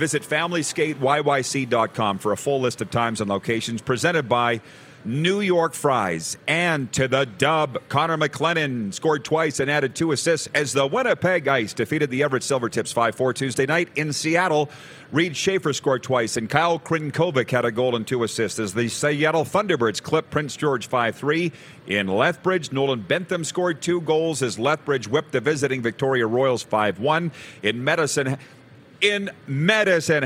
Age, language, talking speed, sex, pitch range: 40-59, English, 160 wpm, male, 125-155 Hz